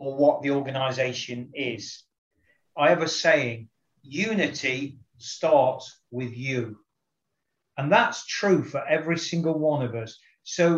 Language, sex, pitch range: English, male, 130-170 Hz